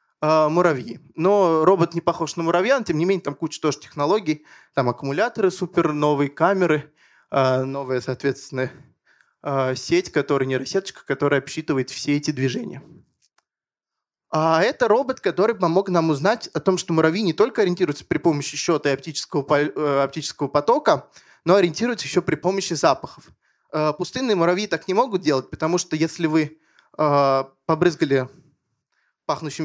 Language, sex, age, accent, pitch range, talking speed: Russian, male, 20-39, native, 145-180 Hz, 140 wpm